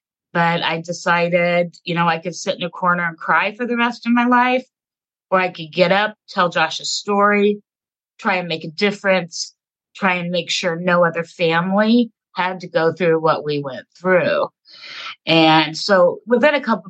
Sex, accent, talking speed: female, American, 185 wpm